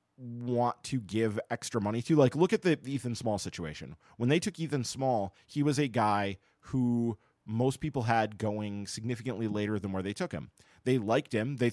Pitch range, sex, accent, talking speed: 100-125 Hz, male, American, 195 wpm